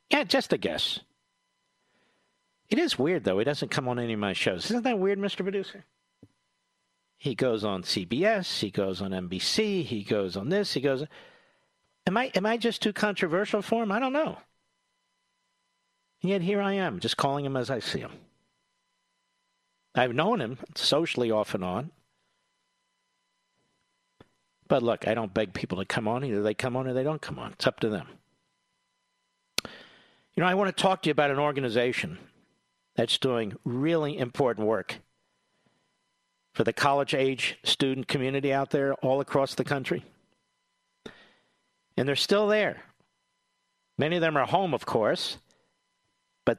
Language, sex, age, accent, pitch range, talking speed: English, male, 50-69, American, 130-200 Hz, 165 wpm